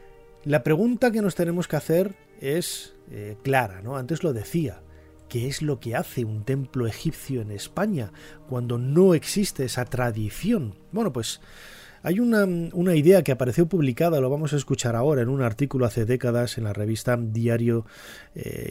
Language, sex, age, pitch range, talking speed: Spanish, male, 30-49, 115-150 Hz, 170 wpm